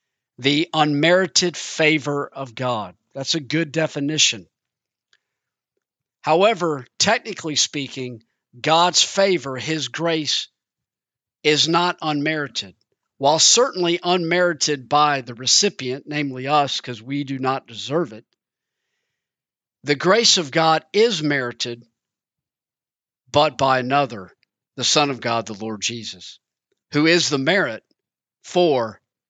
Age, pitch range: 50-69, 125-160 Hz